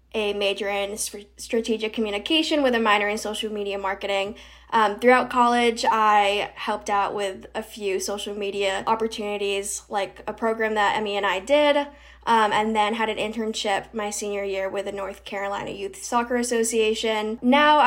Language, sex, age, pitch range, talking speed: English, female, 10-29, 205-245 Hz, 165 wpm